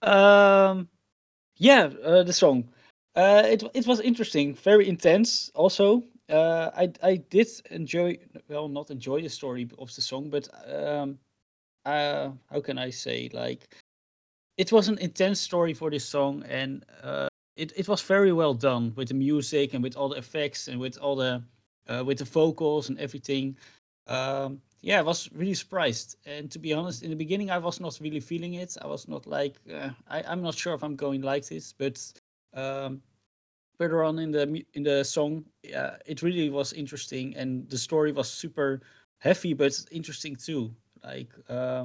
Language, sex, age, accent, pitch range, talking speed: English, male, 30-49, Dutch, 130-165 Hz, 180 wpm